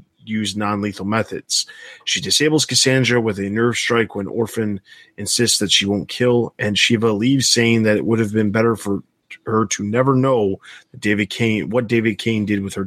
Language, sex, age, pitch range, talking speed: English, male, 30-49, 105-130 Hz, 190 wpm